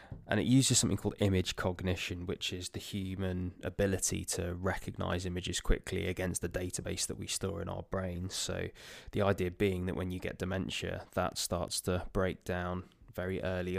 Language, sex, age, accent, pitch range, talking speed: English, male, 20-39, British, 95-105 Hz, 180 wpm